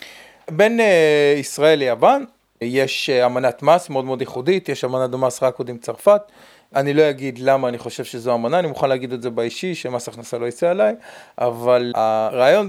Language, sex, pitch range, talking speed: Hebrew, male, 125-185 Hz, 185 wpm